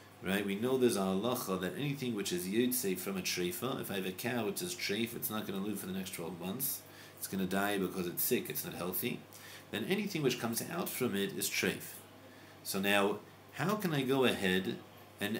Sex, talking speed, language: male, 235 wpm, English